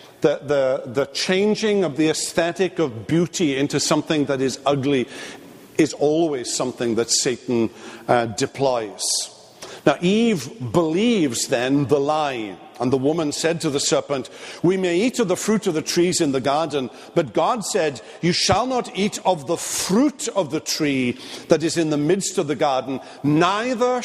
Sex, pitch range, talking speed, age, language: male, 140-185 Hz, 170 wpm, 50-69, English